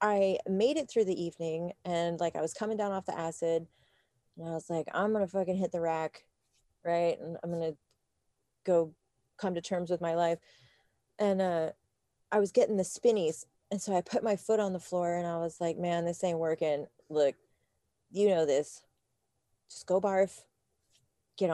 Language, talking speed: English, 190 wpm